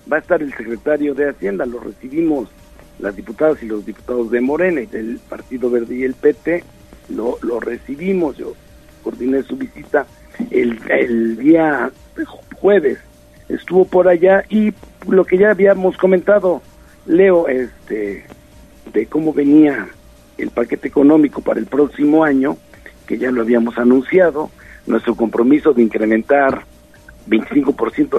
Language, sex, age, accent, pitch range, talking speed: Spanish, male, 60-79, Mexican, 120-190 Hz, 140 wpm